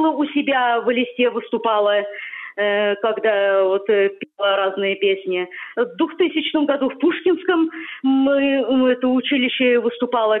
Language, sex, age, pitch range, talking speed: Russian, female, 30-49, 220-300 Hz, 110 wpm